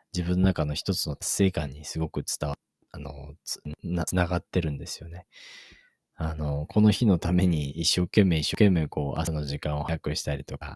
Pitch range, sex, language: 75-90 Hz, male, Japanese